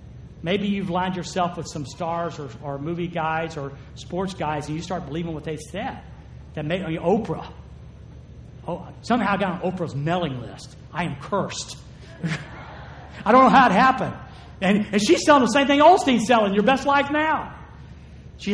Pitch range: 135-195 Hz